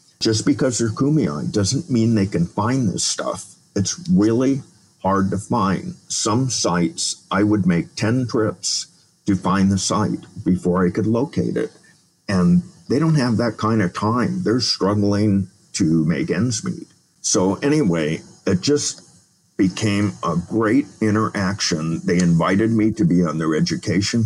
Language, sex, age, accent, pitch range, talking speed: English, male, 50-69, American, 90-120 Hz, 155 wpm